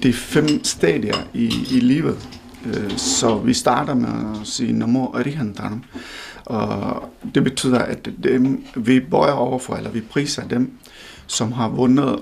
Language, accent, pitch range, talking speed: Danish, native, 115-150 Hz, 145 wpm